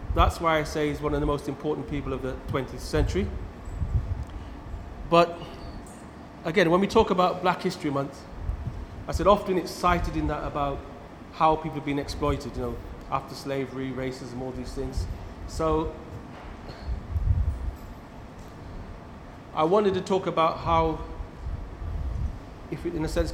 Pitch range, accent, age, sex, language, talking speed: 100-165 Hz, British, 30-49, male, English, 145 wpm